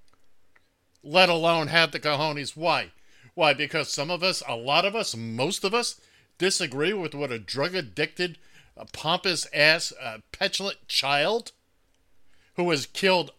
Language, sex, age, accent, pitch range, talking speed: English, male, 50-69, American, 135-205 Hz, 150 wpm